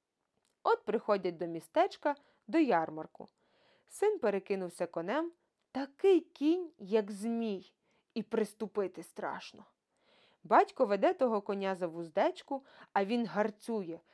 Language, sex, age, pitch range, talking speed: Ukrainian, female, 20-39, 195-330 Hz, 105 wpm